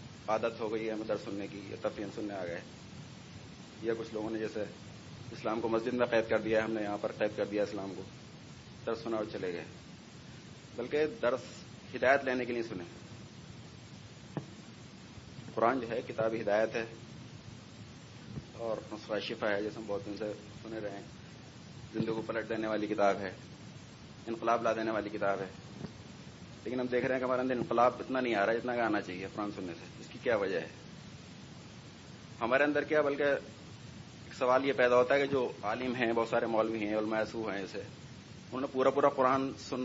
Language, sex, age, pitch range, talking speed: Urdu, male, 30-49, 110-125 Hz, 195 wpm